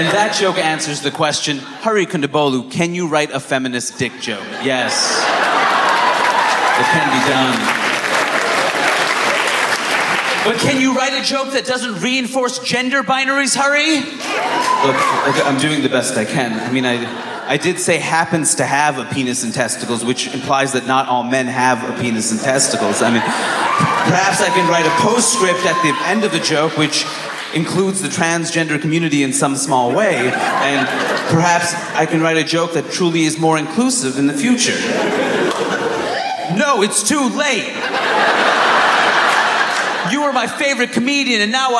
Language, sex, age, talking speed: English, male, 30-49, 160 wpm